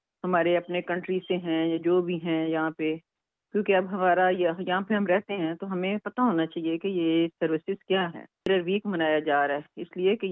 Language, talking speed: Urdu, 220 wpm